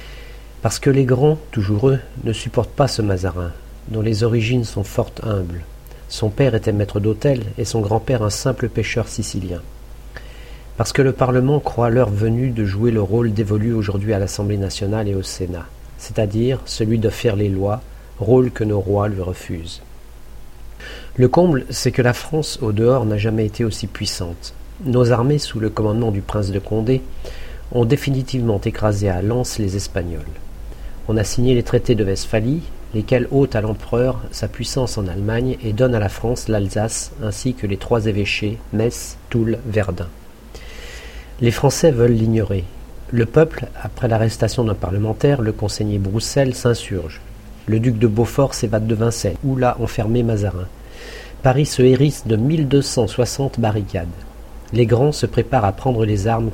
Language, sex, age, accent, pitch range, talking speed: French, male, 50-69, French, 105-125 Hz, 170 wpm